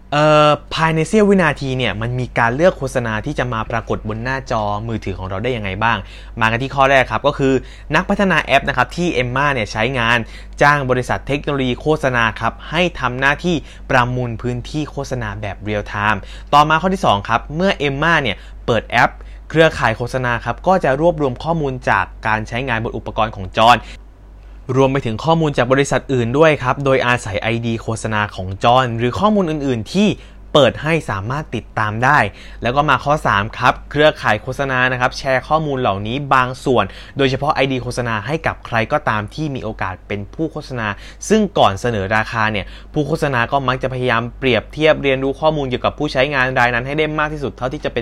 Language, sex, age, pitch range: Thai, male, 20-39, 110-145 Hz